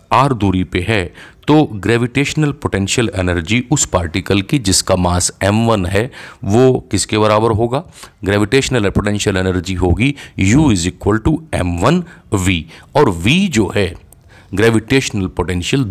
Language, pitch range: Hindi, 90-120 Hz